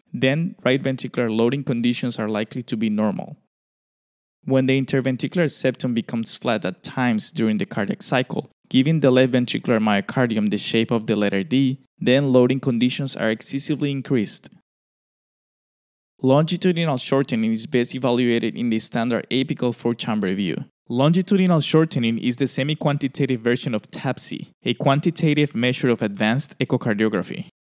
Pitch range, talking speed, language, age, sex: 115-140 Hz, 140 wpm, Hebrew, 20-39, male